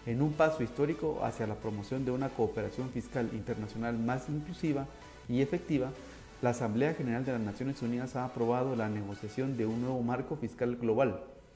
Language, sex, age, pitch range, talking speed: Spanish, male, 40-59, 110-140 Hz, 170 wpm